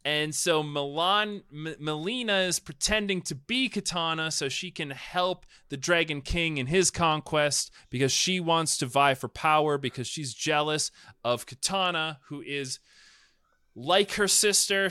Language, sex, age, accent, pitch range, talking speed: English, male, 30-49, American, 130-175 Hz, 140 wpm